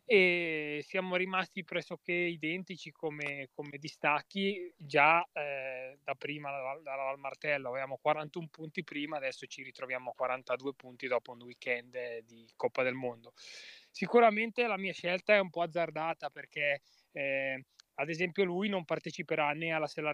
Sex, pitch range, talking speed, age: male, 140-175 Hz, 150 wpm, 20-39